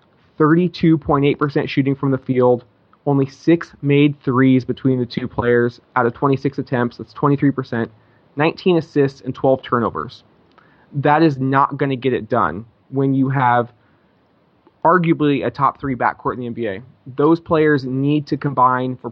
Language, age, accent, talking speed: English, 20-39, American, 155 wpm